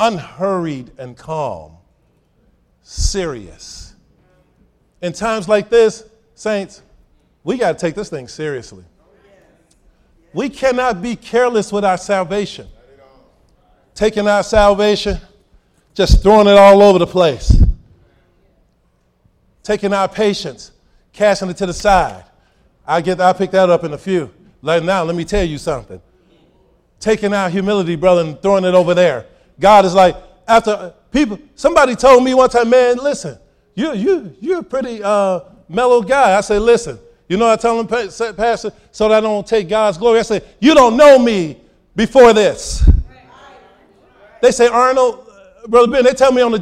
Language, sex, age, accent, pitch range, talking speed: English, male, 40-59, American, 185-245 Hz, 155 wpm